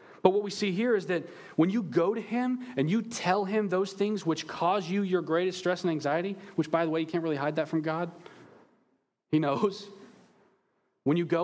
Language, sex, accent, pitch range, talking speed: English, male, American, 130-190 Hz, 220 wpm